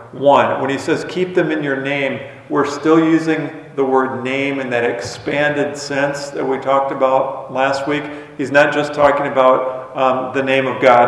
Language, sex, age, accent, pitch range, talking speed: English, male, 40-59, American, 130-155 Hz, 190 wpm